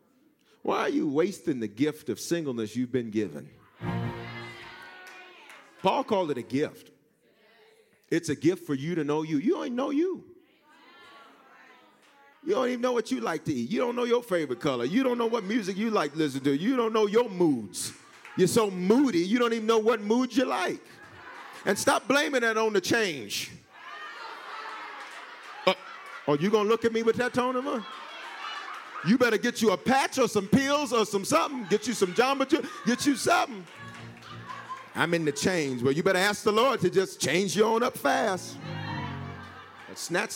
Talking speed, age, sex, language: 190 wpm, 40-59, male, English